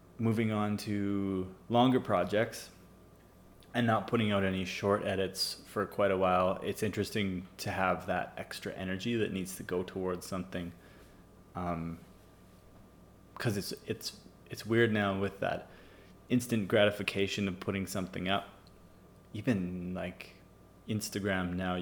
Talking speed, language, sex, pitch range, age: 130 wpm, English, male, 90-100 Hz, 20-39